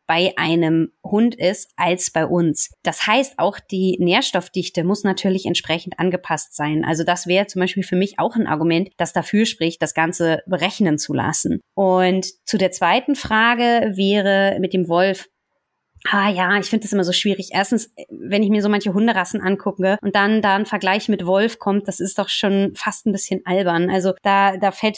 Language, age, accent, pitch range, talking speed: German, 20-39, German, 180-205 Hz, 190 wpm